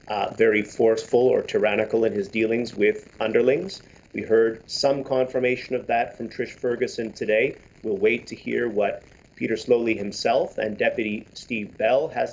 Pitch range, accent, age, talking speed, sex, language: 125-195 Hz, American, 40-59, 160 wpm, male, English